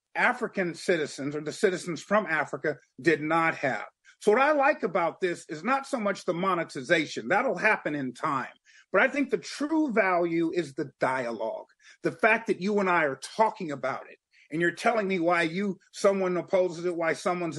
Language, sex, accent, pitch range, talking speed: English, male, American, 170-220 Hz, 190 wpm